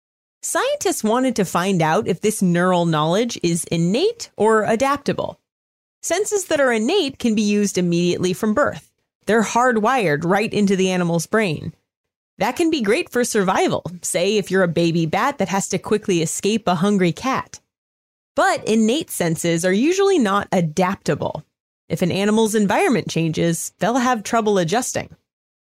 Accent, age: American, 30-49